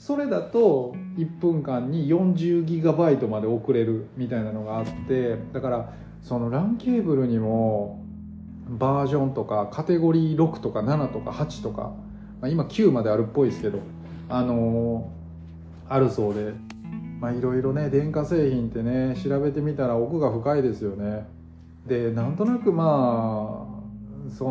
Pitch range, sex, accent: 115-170 Hz, male, native